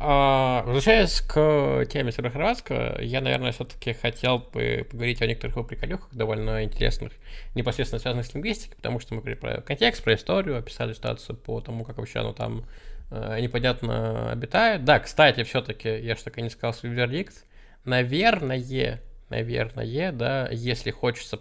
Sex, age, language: male, 20-39, Russian